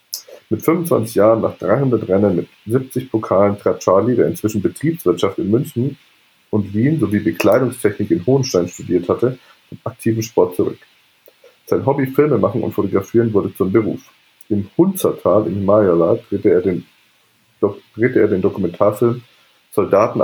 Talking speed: 135 wpm